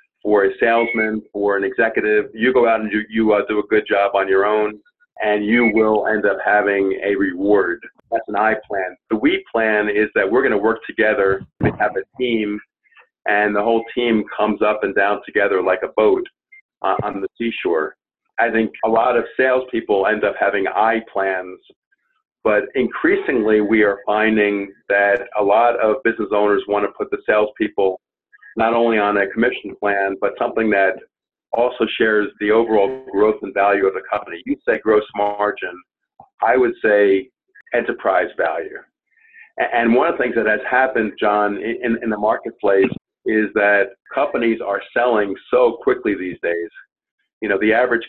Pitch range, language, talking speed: 100-120 Hz, English, 180 wpm